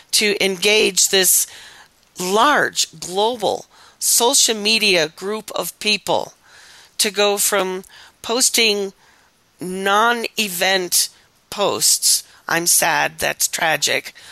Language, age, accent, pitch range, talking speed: English, 40-59, American, 175-215 Hz, 85 wpm